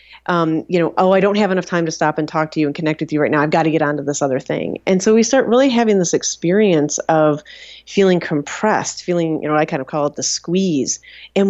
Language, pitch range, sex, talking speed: English, 150-190 Hz, female, 270 wpm